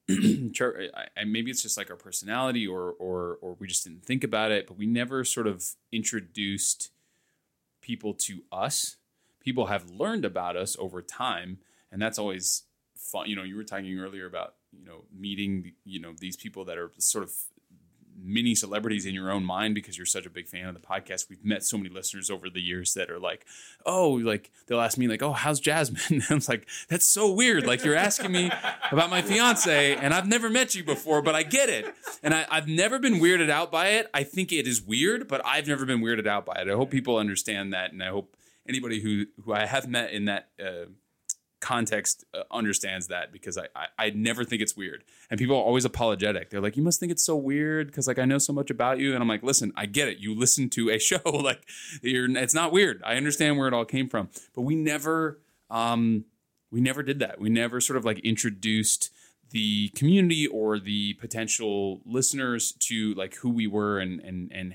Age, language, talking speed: 20-39, English, 220 wpm